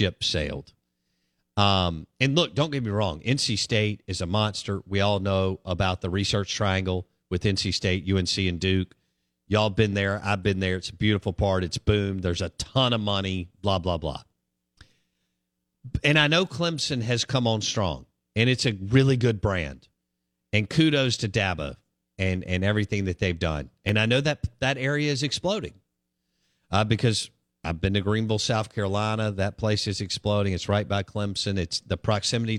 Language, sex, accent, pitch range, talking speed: English, male, American, 90-110 Hz, 180 wpm